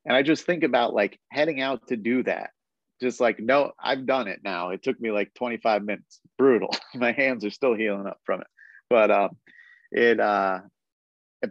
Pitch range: 105-130 Hz